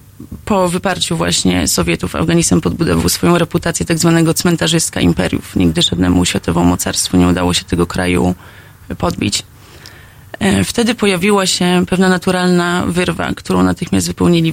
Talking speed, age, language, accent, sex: 130 wpm, 30-49, Polish, native, female